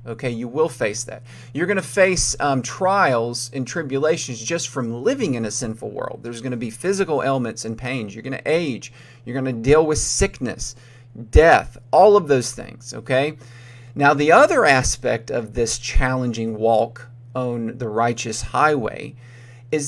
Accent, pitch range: American, 120-155 Hz